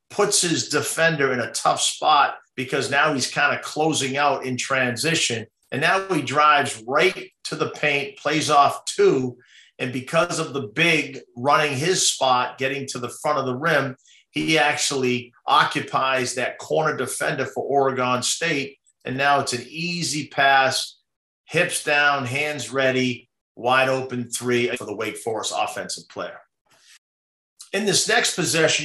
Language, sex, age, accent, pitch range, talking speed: English, male, 50-69, American, 125-155 Hz, 155 wpm